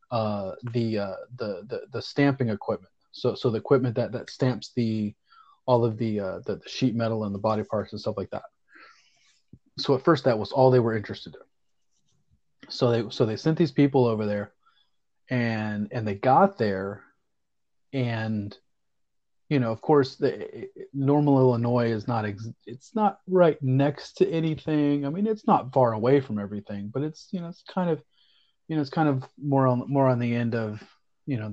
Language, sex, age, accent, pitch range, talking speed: English, male, 30-49, American, 110-140 Hz, 195 wpm